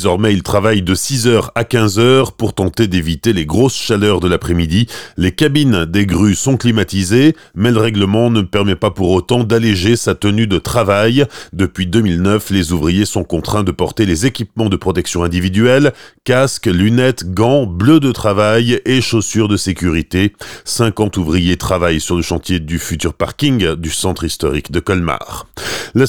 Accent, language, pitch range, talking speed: French, French, 95-120 Hz, 165 wpm